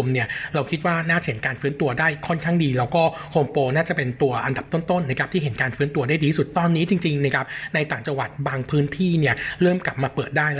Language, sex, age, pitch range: Thai, male, 60-79, 130-165 Hz